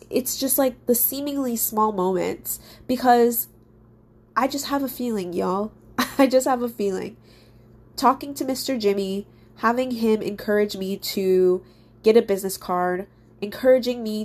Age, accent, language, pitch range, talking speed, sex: 20-39, American, English, 170-220 Hz, 145 wpm, female